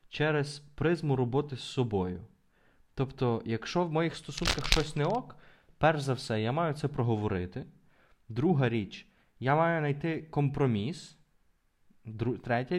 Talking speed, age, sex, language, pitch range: 125 wpm, 20-39, male, Ukrainian, 110-145 Hz